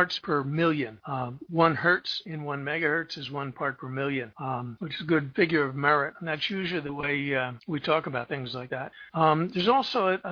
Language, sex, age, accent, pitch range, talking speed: English, male, 60-79, American, 140-175 Hz, 215 wpm